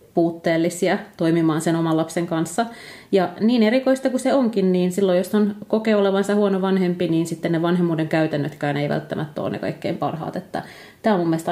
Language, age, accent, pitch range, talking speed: Finnish, 30-49, native, 165-200 Hz, 180 wpm